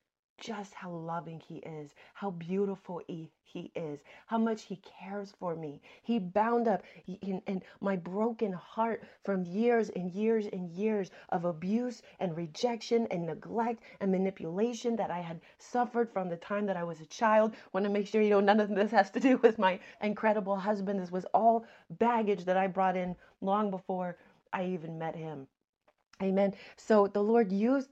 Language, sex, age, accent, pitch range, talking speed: English, female, 30-49, American, 180-220 Hz, 185 wpm